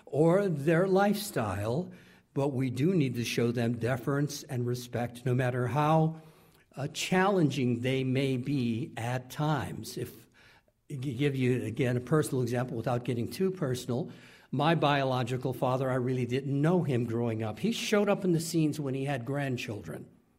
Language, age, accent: English, 60-79, American